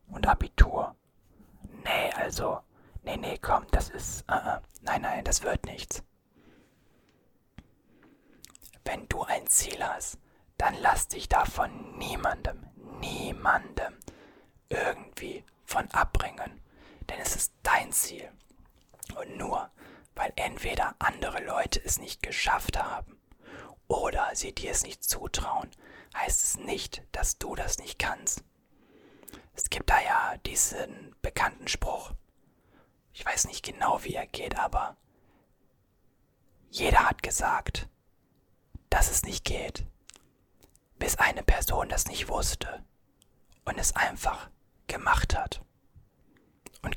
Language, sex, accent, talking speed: German, male, German, 120 wpm